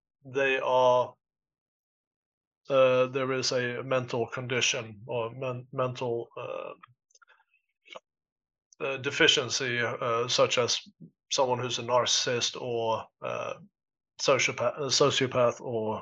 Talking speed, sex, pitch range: 95 wpm, male, 120-145 Hz